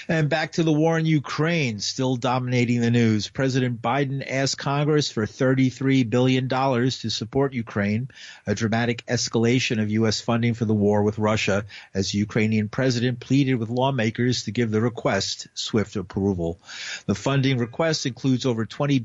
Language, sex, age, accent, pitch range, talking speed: English, male, 50-69, American, 110-135 Hz, 160 wpm